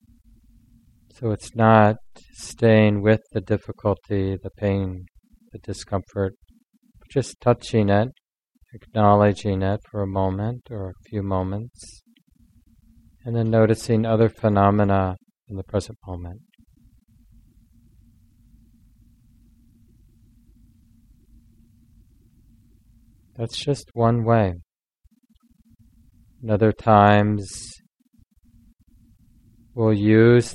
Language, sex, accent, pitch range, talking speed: English, male, American, 100-115 Hz, 85 wpm